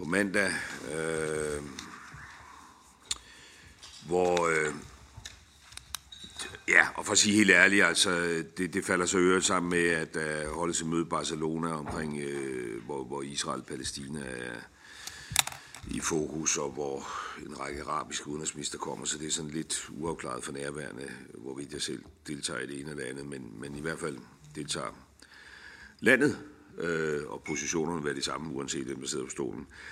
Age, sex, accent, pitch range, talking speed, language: 60-79, male, native, 70-85 Hz, 160 wpm, Danish